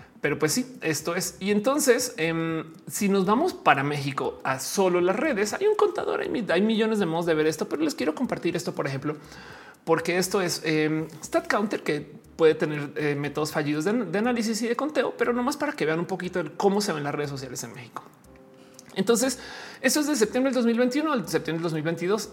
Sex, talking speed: male, 205 wpm